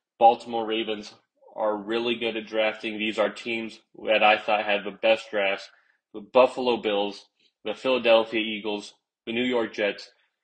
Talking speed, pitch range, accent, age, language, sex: 155 wpm, 105-120 Hz, American, 20-39, English, male